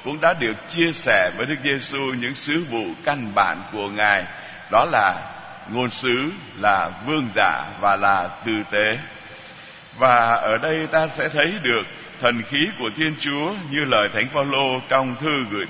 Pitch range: 110-150 Hz